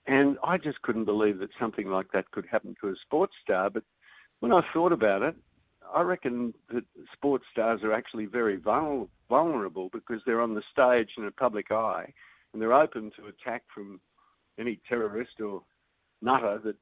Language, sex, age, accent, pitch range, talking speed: English, male, 60-79, Australian, 110-140 Hz, 180 wpm